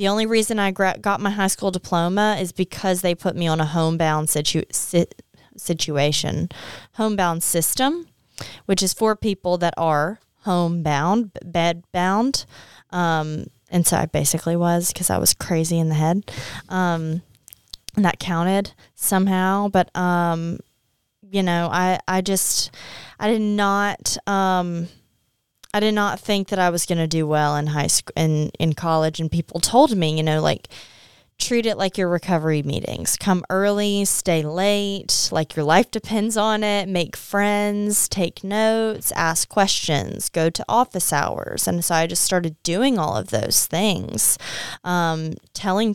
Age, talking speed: 20-39, 155 wpm